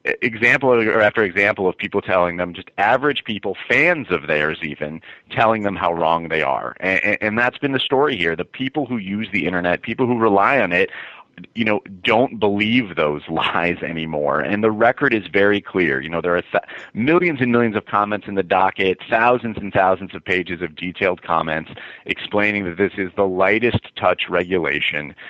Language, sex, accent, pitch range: English, male, American, 90-110 Hz